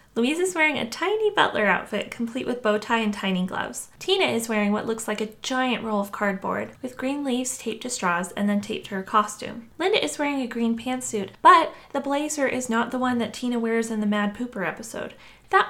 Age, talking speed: 20-39, 225 wpm